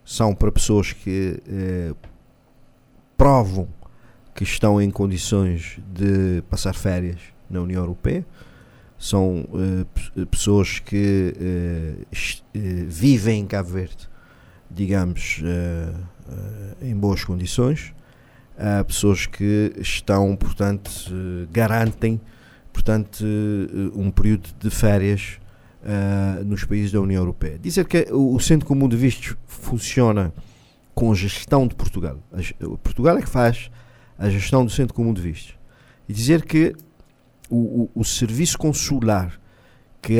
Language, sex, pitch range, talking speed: Portuguese, male, 95-125 Hz, 120 wpm